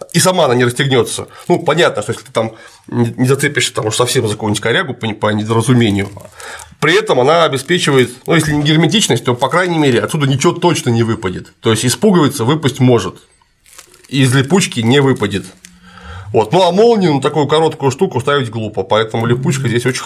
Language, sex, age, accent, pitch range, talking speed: Russian, male, 30-49, native, 115-160 Hz, 185 wpm